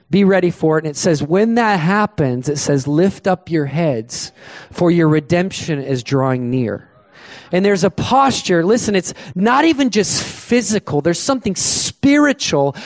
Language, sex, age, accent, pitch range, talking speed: English, male, 30-49, American, 155-205 Hz, 165 wpm